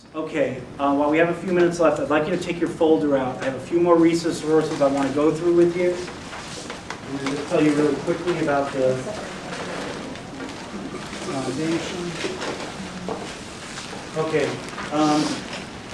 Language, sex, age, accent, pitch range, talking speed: English, male, 40-59, American, 150-175 Hz, 160 wpm